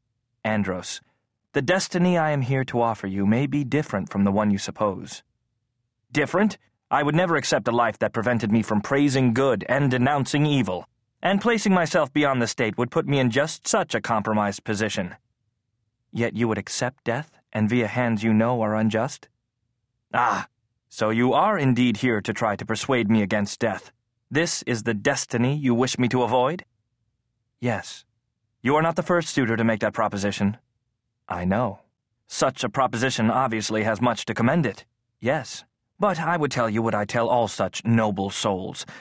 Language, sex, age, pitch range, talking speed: English, male, 30-49, 110-140 Hz, 180 wpm